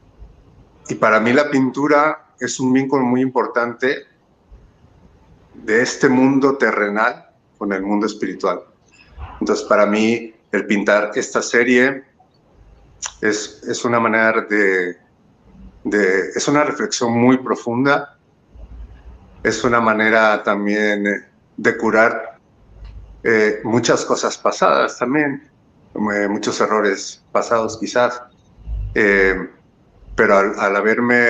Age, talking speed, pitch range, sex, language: 50-69, 105 wpm, 100-125 Hz, male, Spanish